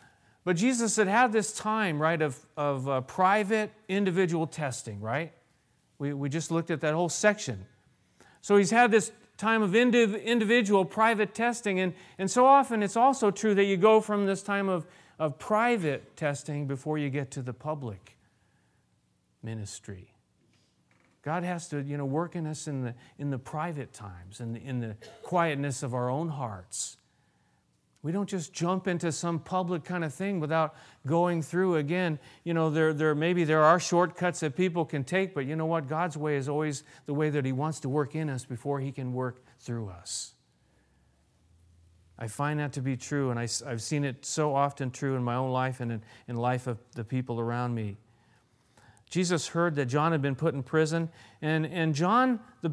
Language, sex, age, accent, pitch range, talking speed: English, male, 40-59, American, 130-180 Hz, 190 wpm